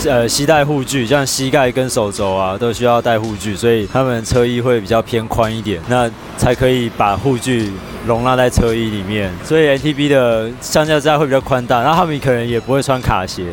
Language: Chinese